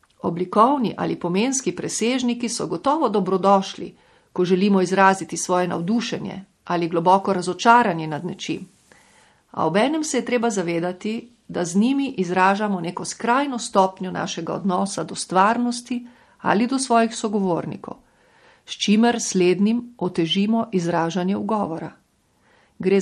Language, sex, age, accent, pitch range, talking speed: Italian, female, 50-69, Croatian, 180-225 Hz, 115 wpm